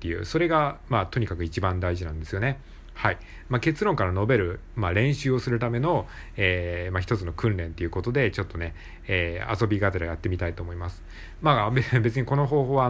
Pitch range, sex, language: 85-115 Hz, male, Japanese